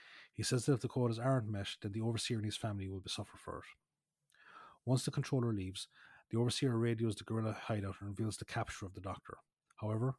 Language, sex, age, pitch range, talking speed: English, male, 30-49, 100-120 Hz, 210 wpm